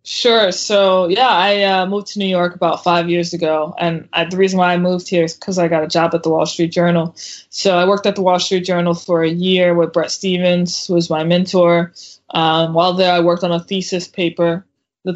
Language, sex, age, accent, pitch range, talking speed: English, female, 20-39, American, 165-185 Hz, 240 wpm